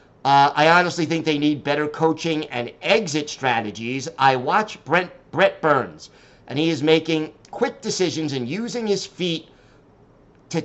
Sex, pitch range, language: male, 135-165 Hz, English